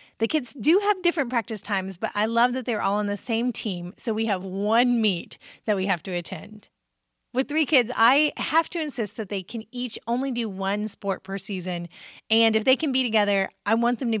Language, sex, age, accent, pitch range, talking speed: English, female, 30-49, American, 200-260 Hz, 230 wpm